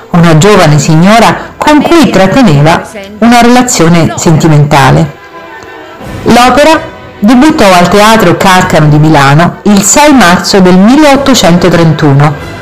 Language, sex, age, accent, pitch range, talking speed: Italian, female, 50-69, native, 155-210 Hz, 100 wpm